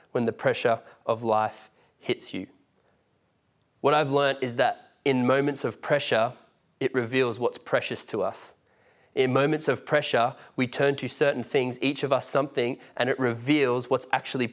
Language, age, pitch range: English, 20-39, 130-165 Hz